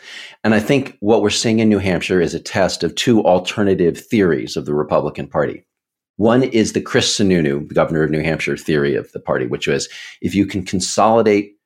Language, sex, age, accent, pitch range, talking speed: English, male, 40-59, American, 80-110 Hz, 205 wpm